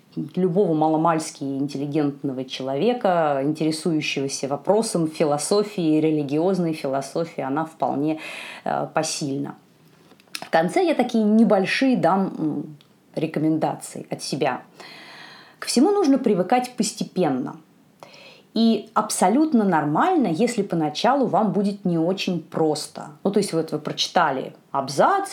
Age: 30-49